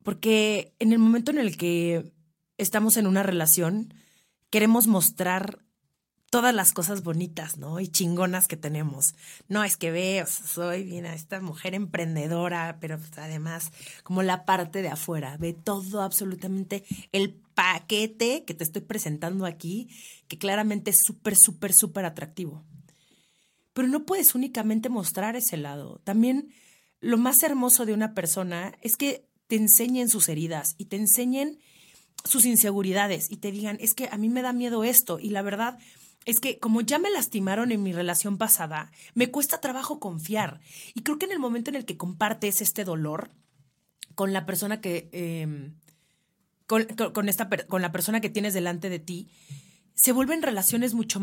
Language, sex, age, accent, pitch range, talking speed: Spanish, female, 30-49, Mexican, 175-225 Hz, 165 wpm